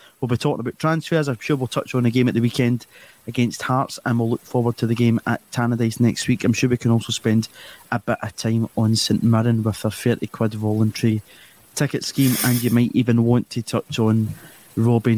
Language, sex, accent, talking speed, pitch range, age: English, male, British, 225 wpm, 110-130 Hz, 30-49